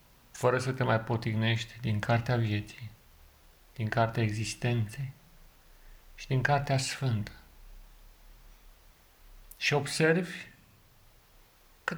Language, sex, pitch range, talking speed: Romanian, male, 110-130 Hz, 90 wpm